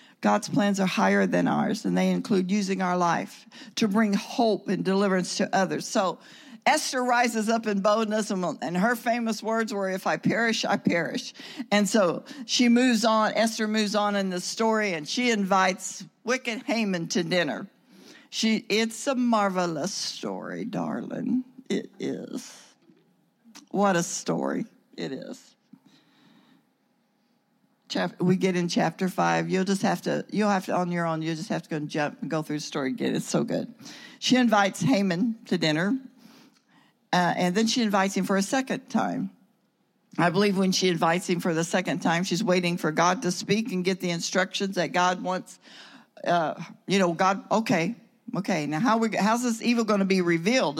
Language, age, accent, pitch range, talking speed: English, 60-79, American, 185-235 Hz, 175 wpm